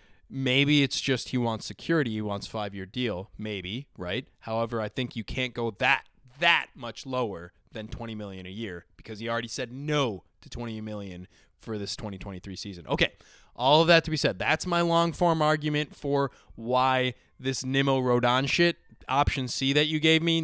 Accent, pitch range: American, 110-145 Hz